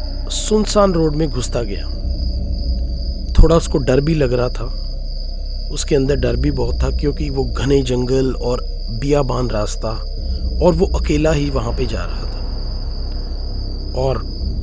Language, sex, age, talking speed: Hindi, male, 40-59, 145 wpm